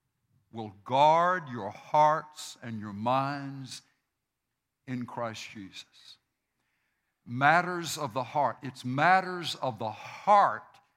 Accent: American